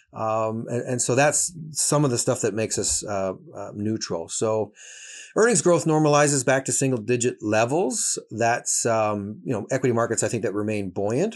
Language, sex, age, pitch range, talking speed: English, male, 40-59, 110-155 Hz, 185 wpm